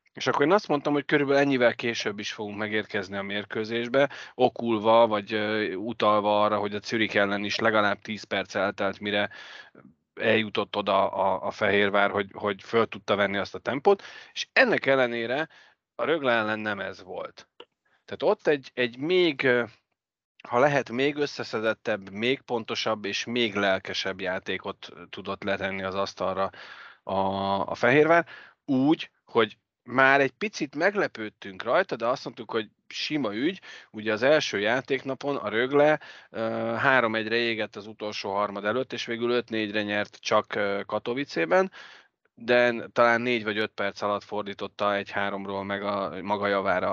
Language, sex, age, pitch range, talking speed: Hungarian, male, 30-49, 100-125 Hz, 150 wpm